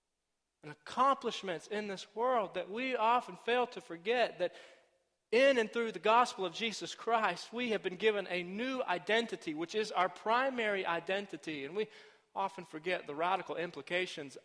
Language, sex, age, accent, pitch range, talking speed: English, male, 40-59, American, 150-205 Hz, 160 wpm